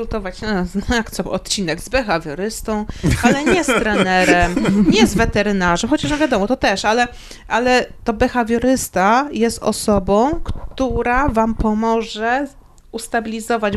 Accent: native